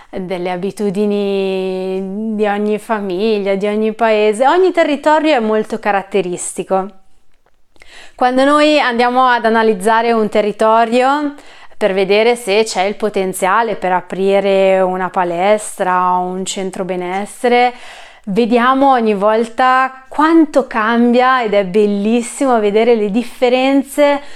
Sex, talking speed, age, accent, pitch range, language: female, 110 wpm, 30-49, native, 195-235 Hz, Italian